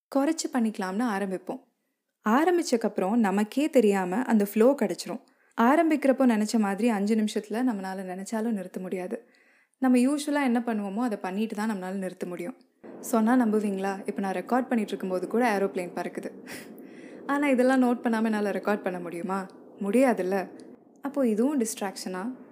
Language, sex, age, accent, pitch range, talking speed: Tamil, female, 20-39, native, 195-255 Hz, 135 wpm